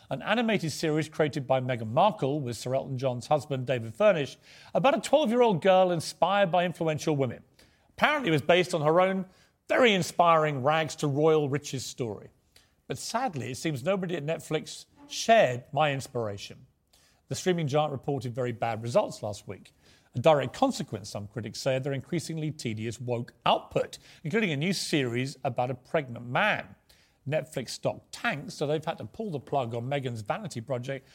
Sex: male